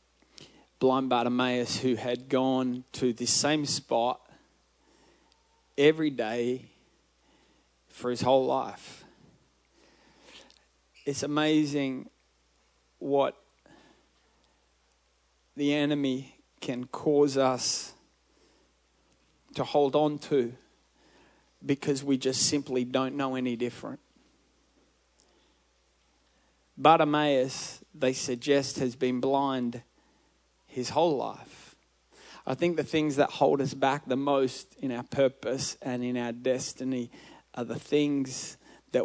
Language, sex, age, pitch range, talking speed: English, male, 20-39, 120-140 Hz, 100 wpm